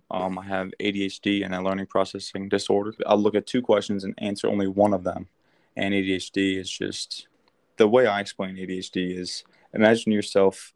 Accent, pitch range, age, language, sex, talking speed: American, 95-100 Hz, 20-39, English, male, 180 wpm